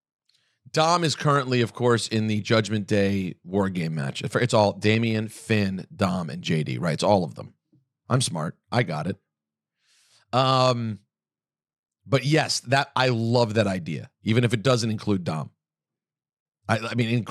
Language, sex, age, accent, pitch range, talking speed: English, male, 40-59, American, 115-170 Hz, 160 wpm